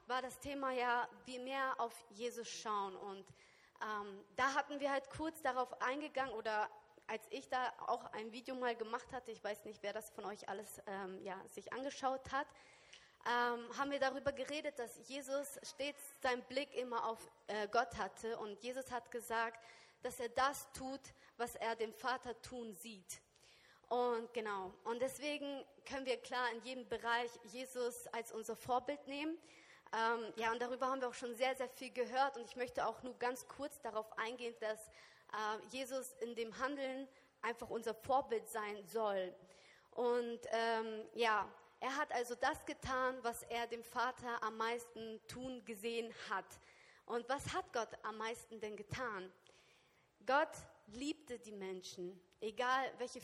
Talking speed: 165 wpm